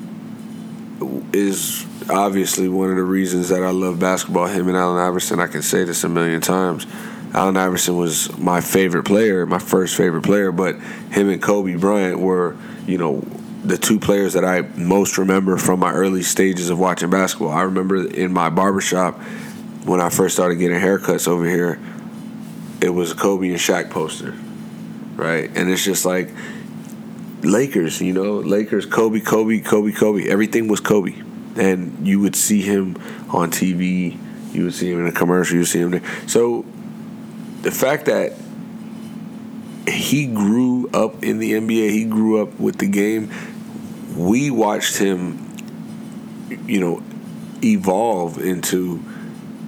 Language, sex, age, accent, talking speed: English, male, 20-39, American, 155 wpm